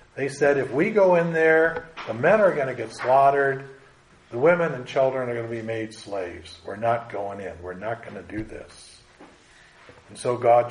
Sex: male